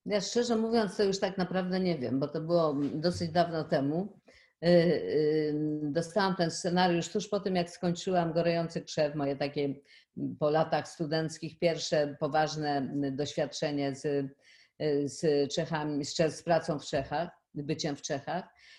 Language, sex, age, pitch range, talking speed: Polish, female, 50-69, 145-175 Hz, 140 wpm